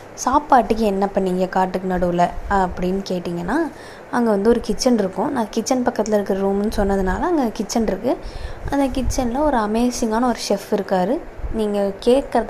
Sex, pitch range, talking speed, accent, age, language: female, 195-250 Hz, 145 wpm, native, 20-39, Tamil